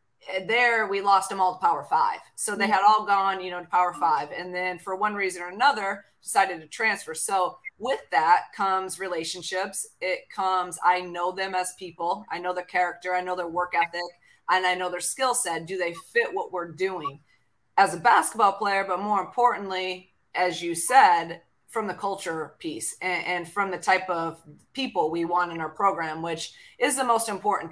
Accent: American